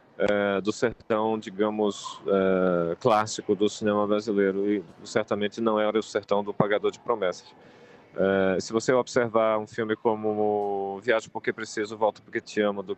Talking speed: 145 wpm